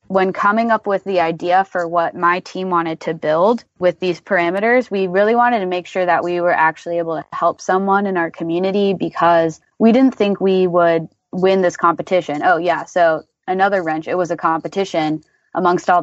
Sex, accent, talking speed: female, American, 200 wpm